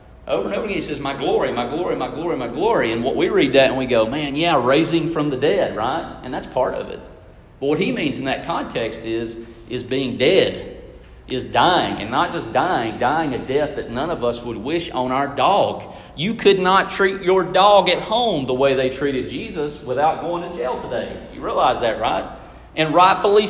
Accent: American